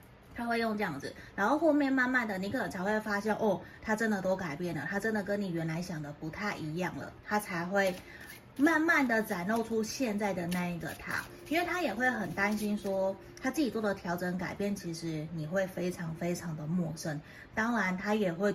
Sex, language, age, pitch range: female, Chinese, 20-39, 170-210 Hz